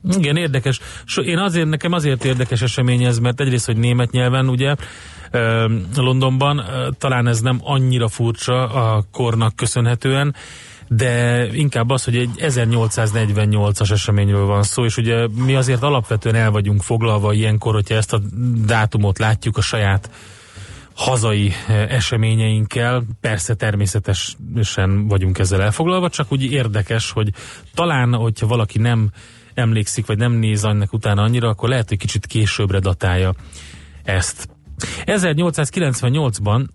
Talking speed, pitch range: 130 wpm, 105-125 Hz